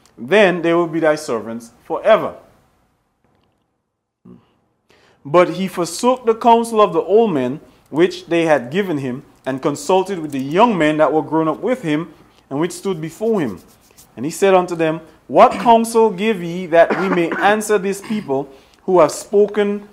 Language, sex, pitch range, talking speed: English, male, 150-190 Hz, 170 wpm